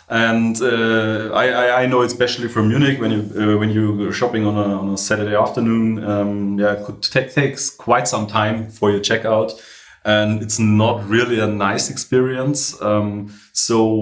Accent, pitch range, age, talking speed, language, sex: German, 105-125 Hz, 30-49, 170 wpm, English, male